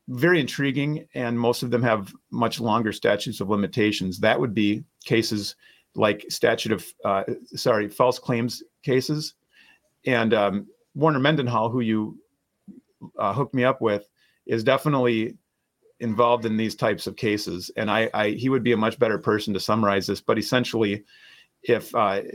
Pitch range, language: 105-130 Hz, English